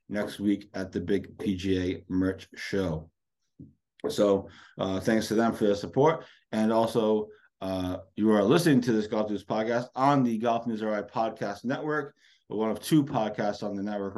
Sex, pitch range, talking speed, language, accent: male, 100-120 Hz, 180 wpm, English, American